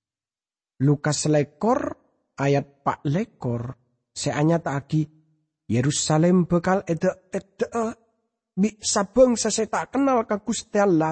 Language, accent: English, Indonesian